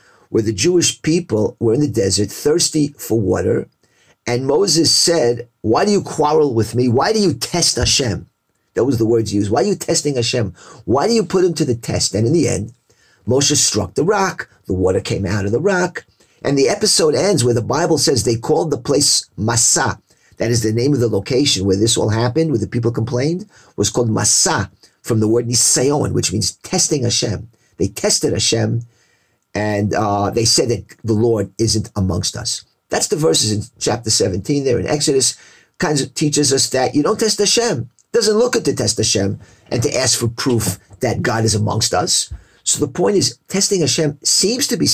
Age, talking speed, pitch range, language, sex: 50-69, 205 wpm, 110-150 Hz, English, male